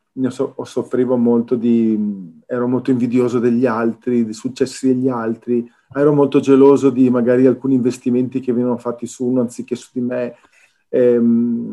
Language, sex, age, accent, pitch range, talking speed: Italian, male, 40-59, native, 110-130 Hz, 155 wpm